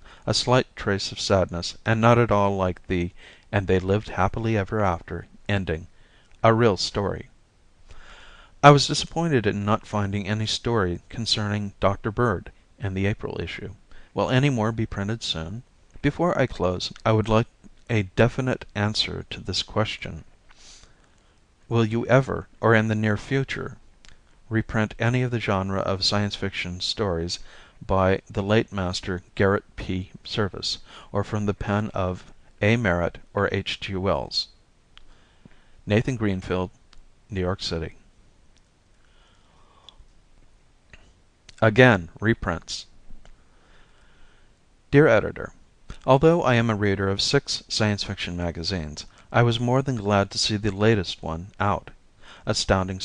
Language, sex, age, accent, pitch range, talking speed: English, male, 50-69, American, 95-115 Hz, 135 wpm